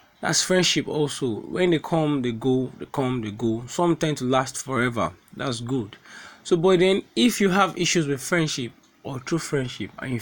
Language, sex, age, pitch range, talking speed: English, male, 20-39, 115-160 Hz, 195 wpm